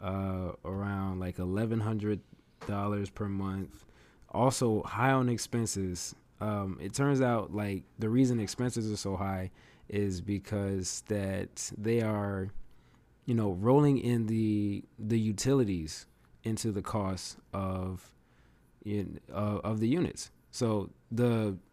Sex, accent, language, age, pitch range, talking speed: male, American, English, 20-39, 95-115 Hz, 125 wpm